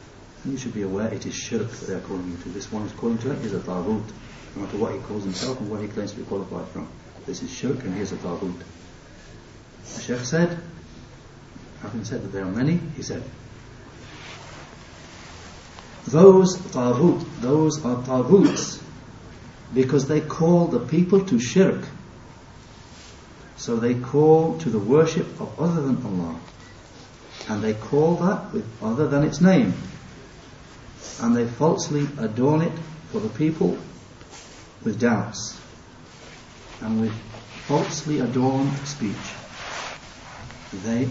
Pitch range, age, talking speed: 105-150 Hz, 60-79, 145 wpm